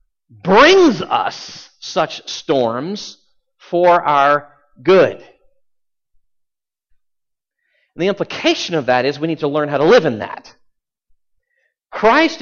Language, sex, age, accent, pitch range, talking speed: English, male, 50-69, American, 130-185 Hz, 105 wpm